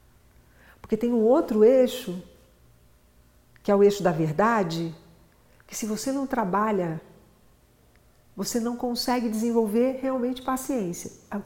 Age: 50-69